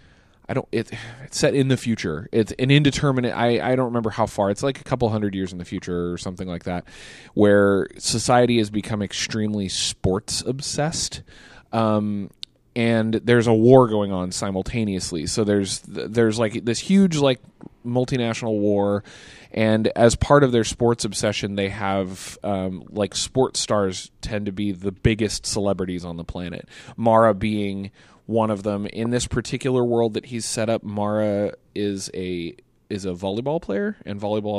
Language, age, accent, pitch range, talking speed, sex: English, 20-39, American, 100-120 Hz, 170 wpm, male